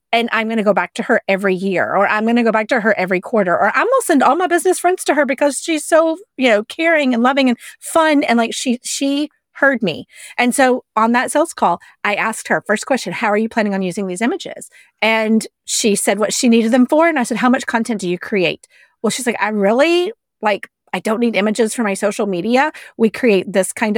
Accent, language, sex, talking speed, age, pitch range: American, English, female, 255 wpm, 30-49, 195-245 Hz